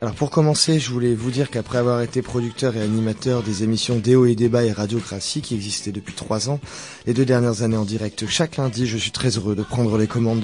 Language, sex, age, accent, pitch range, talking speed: French, male, 30-49, French, 110-130 Hz, 235 wpm